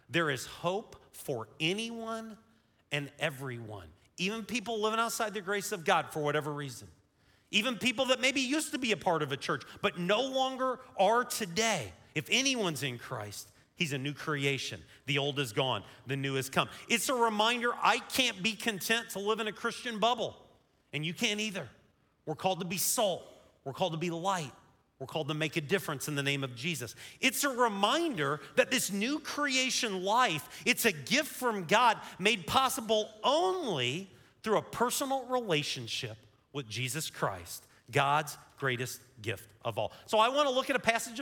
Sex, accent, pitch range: male, American, 145-235 Hz